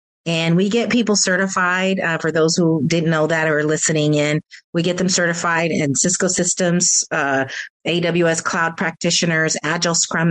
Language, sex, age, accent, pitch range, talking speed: English, female, 40-59, American, 155-190 Hz, 170 wpm